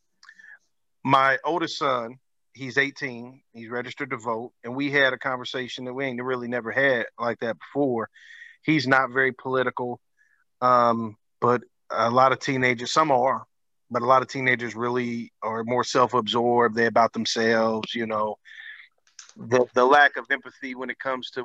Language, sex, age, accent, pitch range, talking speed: English, male, 40-59, American, 120-135 Hz, 160 wpm